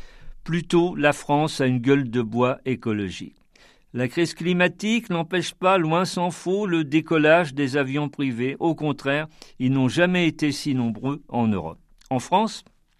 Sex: male